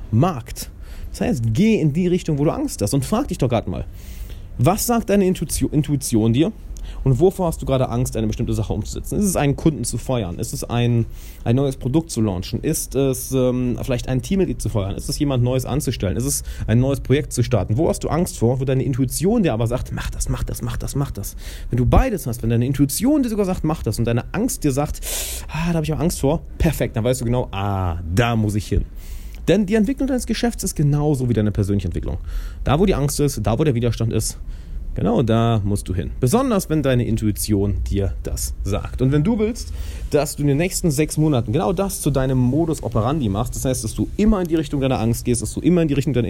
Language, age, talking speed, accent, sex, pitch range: German, 30-49, 245 wpm, German, male, 110-155 Hz